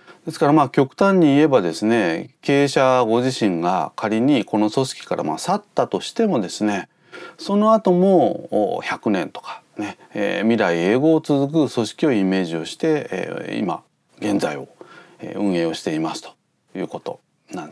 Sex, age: male, 30-49